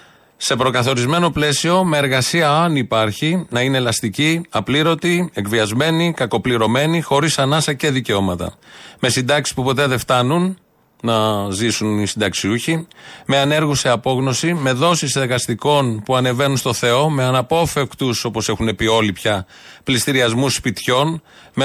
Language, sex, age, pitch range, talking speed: Greek, male, 30-49, 120-145 Hz, 135 wpm